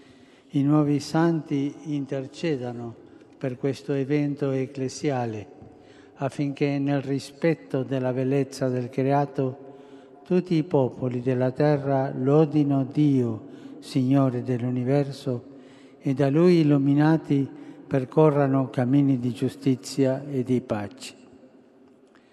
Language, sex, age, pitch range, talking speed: Italian, male, 60-79, 130-145 Hz, 95 wpm